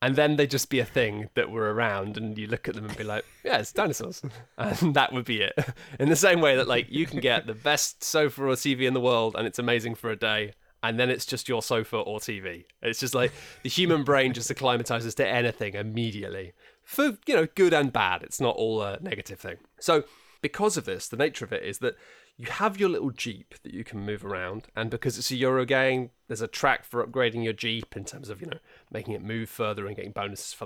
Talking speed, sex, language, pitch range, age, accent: 245 wpm, male, English, 110-145 Hz, 20-39, British